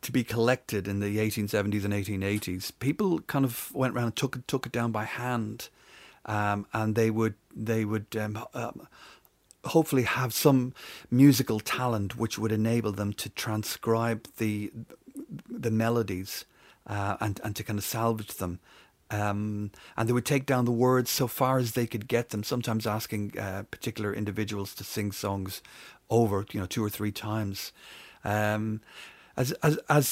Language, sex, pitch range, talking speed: English, male, 105-125 Hz, 165 wpm